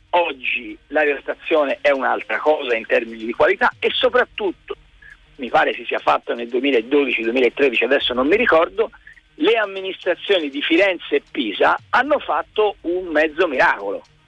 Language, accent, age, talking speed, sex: Italian, native, 50-69, 140 wpm, male